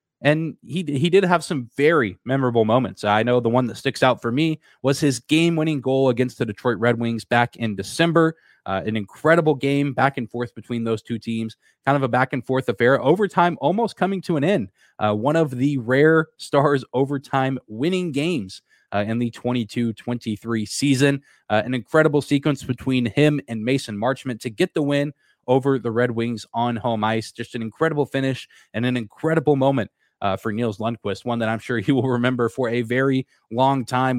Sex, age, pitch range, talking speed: male, 20-39, 115-145 Hz, 195 wpm